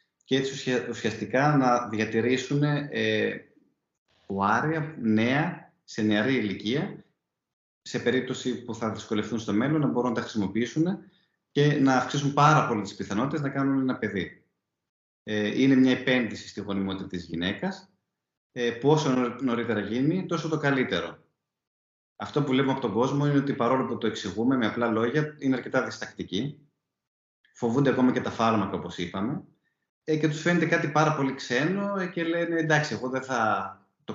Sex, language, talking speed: male, Greek, 155 wpm